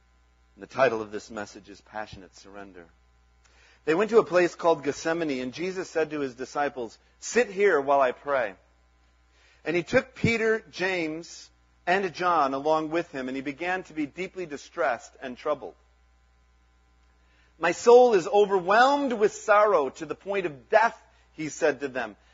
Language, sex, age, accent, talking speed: English, male, 40-59, American, 160 wpm